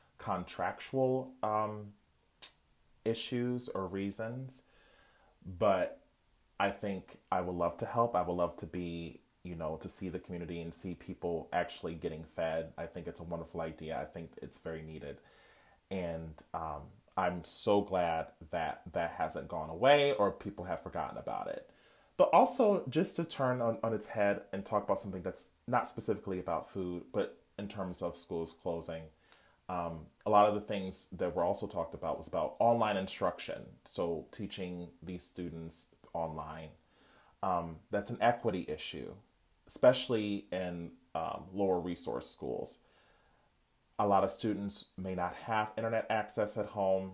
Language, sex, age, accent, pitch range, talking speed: English, male, 30-49, American, 85-105 Hz, 155 wpm